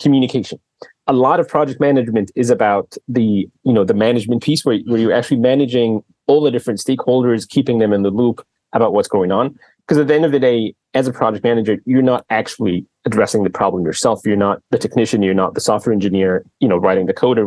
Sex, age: male, 30-49